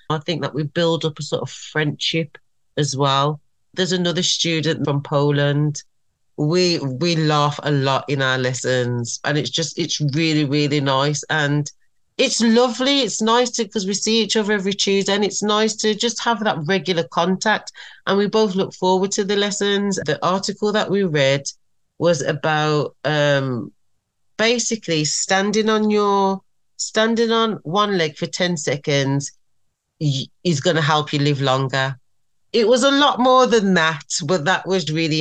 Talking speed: 170 wpm